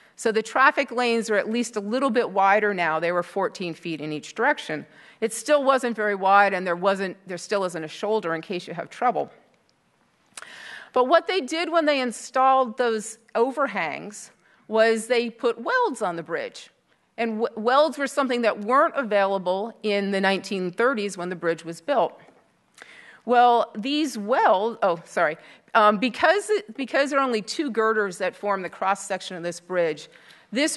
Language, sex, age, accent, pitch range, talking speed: English, female, 40-59, American, 190-240 Hz, 175 wpm